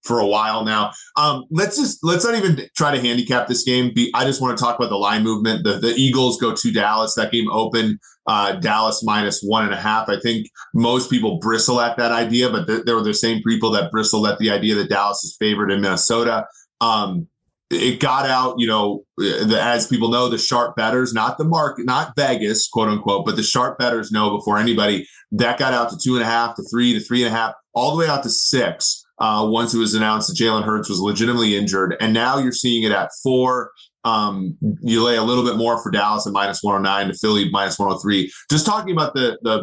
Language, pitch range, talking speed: English, 105-125 Hz, 235 wpm